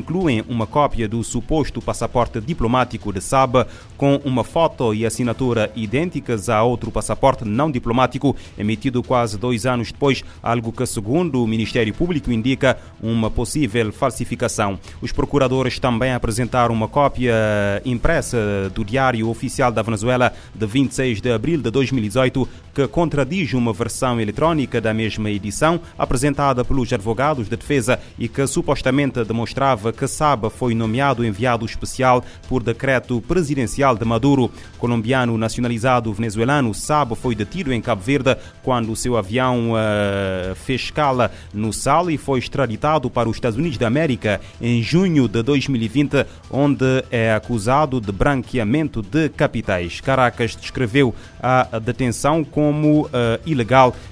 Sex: male